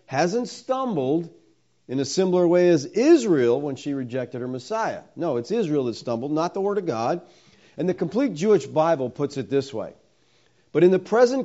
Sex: male